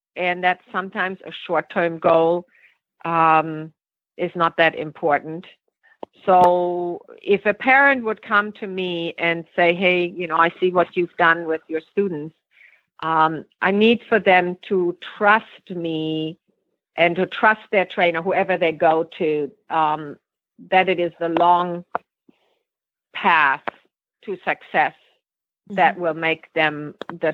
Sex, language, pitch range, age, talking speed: female, English, 155-185 Hz, 50-69, 140 wpm